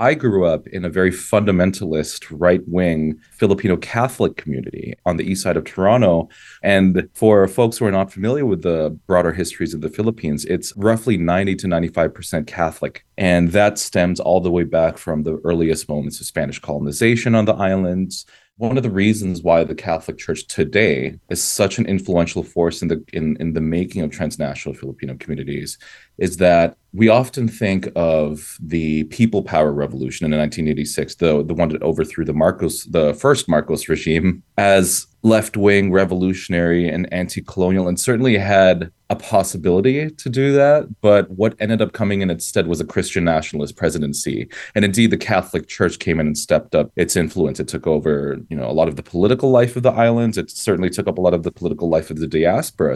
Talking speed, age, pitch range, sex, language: 185 wpm, 30-49, 80-105 Hz, male, English